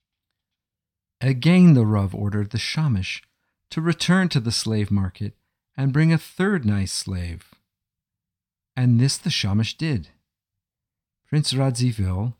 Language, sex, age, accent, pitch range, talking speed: English, male, 50-69, American, 95-140 Hz, 120 wpm